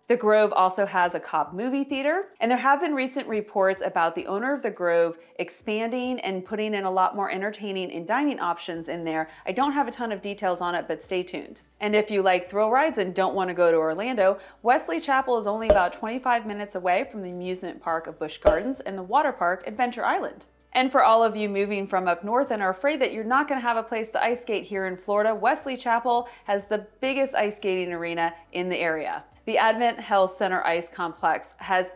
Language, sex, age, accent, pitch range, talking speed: English, female, 30-49, American, 185-230 Hz, 225 wpm